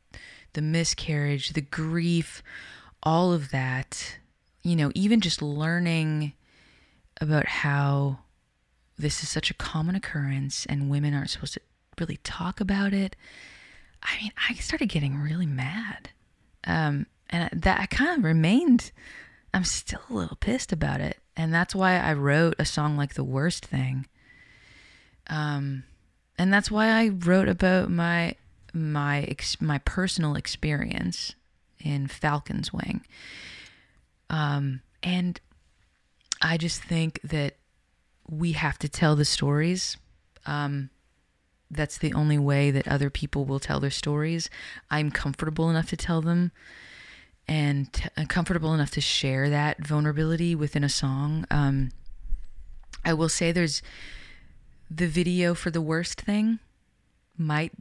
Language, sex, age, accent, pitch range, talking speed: English, female, 20-39, American, 140-170 Hz, 135 wpm